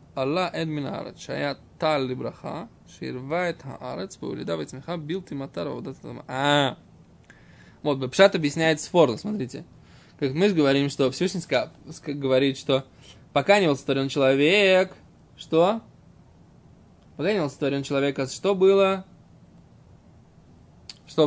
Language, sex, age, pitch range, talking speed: Russian, male, 20-39, 135-180 Hz, 105 wpm